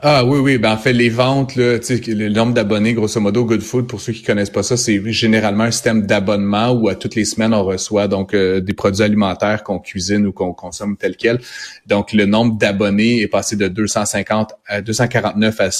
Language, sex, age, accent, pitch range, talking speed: French, male, 30-49, Canadian, 100-115 Hz, 215 wpm